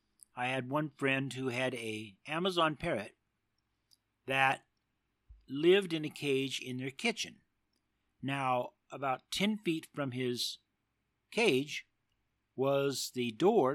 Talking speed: 120 wpm